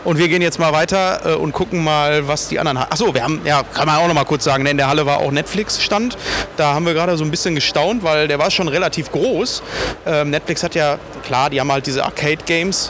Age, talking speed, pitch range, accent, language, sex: 30-49, 245 wpm, 140-180 Hz, German, German, male